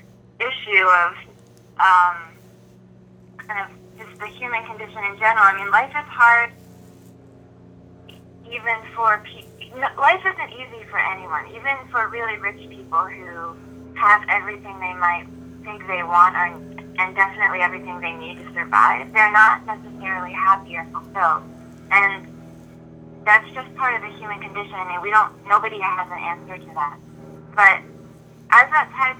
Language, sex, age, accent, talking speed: English, female, 20-39, American, 155 wpm